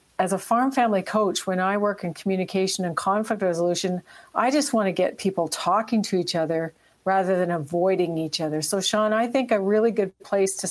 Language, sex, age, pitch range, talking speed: English, female, 50-69, 175-210 Hz, 205 wpm